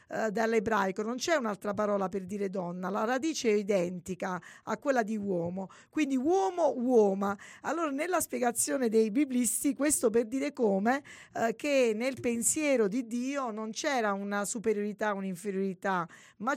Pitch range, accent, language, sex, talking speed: 190-250 Hz, native, Italian, female, 145 wpm